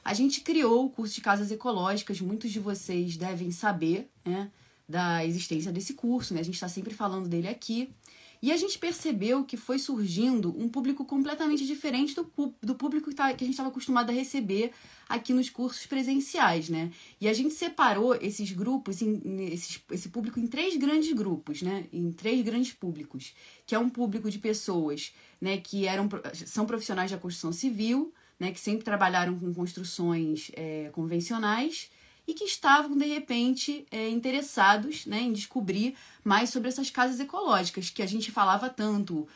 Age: 20-39